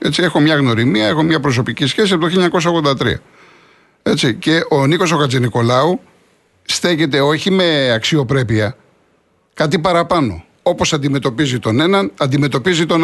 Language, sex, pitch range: Greek, male, 135-175 Hz